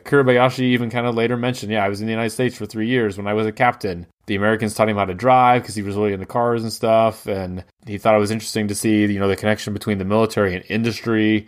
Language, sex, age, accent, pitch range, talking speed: English, male, 20-39, American, 100-125 Hz, 275 wpm